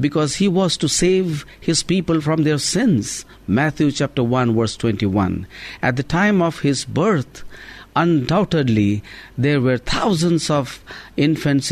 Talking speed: 140 wpm